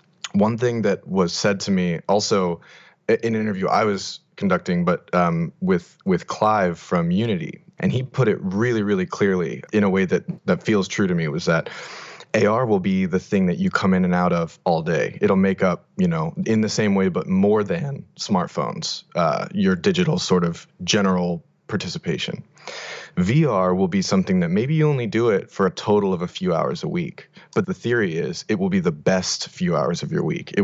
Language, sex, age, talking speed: English, male, 30-49, 210 wpm